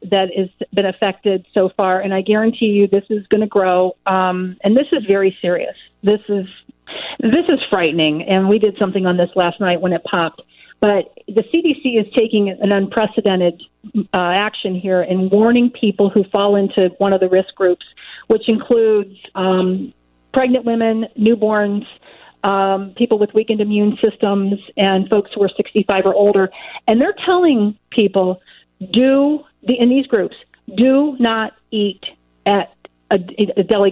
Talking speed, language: 160 wpm, English